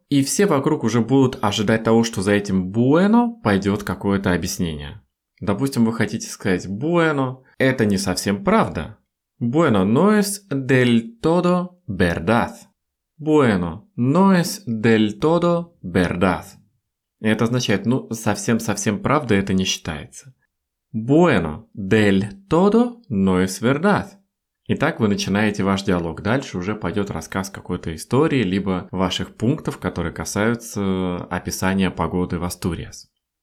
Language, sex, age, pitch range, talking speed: Russian, male, 20-39, 95-145 Hz, 125 wpm